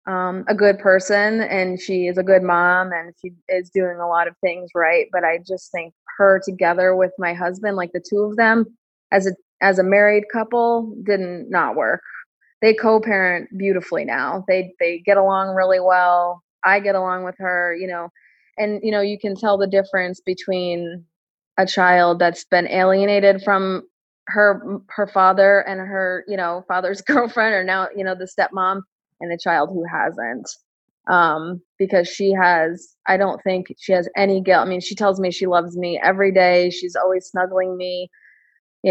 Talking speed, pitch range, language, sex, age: 185 wpm, 180-200 Hz, English, female, 20-39